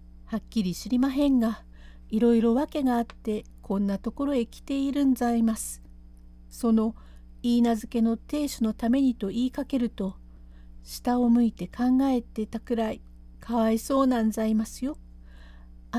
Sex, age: female, 50-69